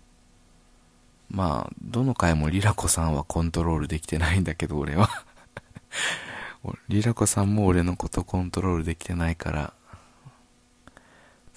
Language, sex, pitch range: Japanese, male, 80-100 Hz